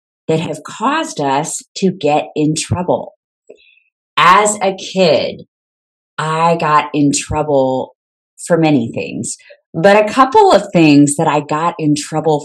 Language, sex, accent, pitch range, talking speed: English, female, American, 145-200 Hz, 135 wpm